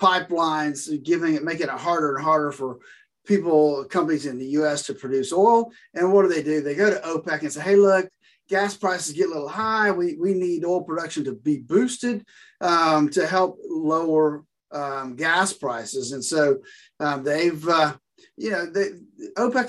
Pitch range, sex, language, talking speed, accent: 140-190 Hz, male, English, 180 wpm, American